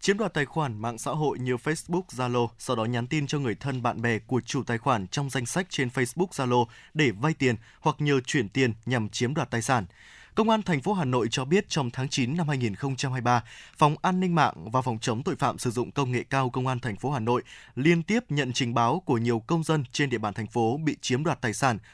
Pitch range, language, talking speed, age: 120-155 Hz, Vietnamese, 255 wpm, 20-39